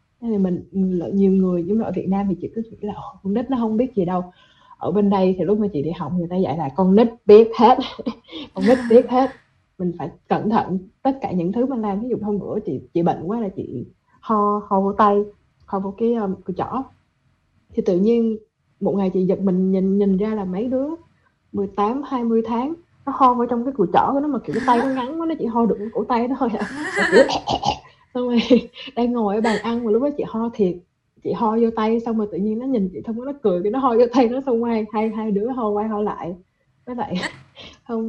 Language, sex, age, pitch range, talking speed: Vietnamese, female, 20-39, 195-240 Hz, 250 wpm